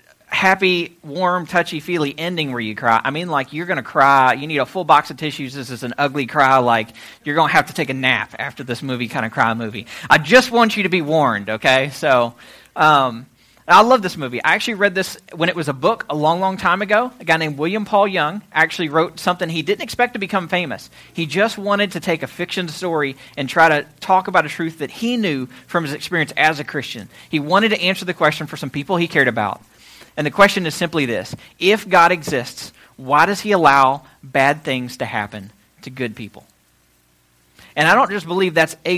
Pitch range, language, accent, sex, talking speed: 130-180 Hz, English, American, male, 230 wpm